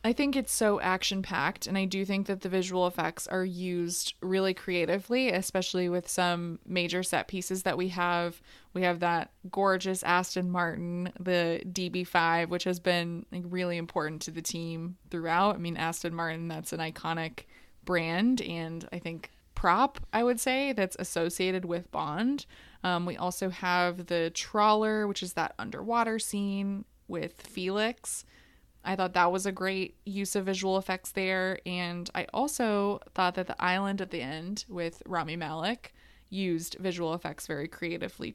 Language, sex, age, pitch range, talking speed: English, female, 20-39, 175-195 Hz, 165 wpm